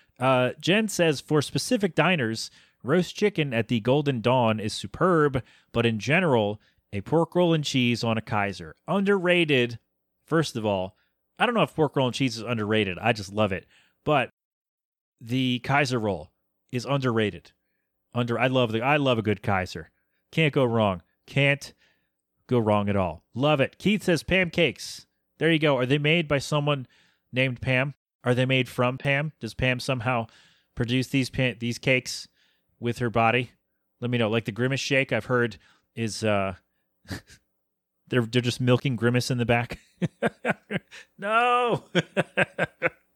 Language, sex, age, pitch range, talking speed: English, male, 30-49, 110-145 Hz, 165 wpm